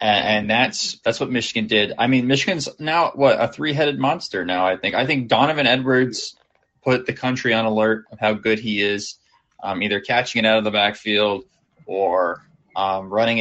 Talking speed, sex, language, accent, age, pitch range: 190 wpm, male, English, American, 20-39, 105-135 Hz